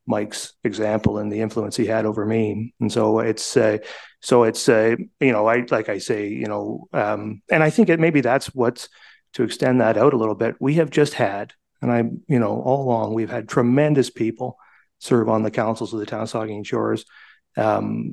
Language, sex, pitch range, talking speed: English, male, 110-130 Hz, 210 wpm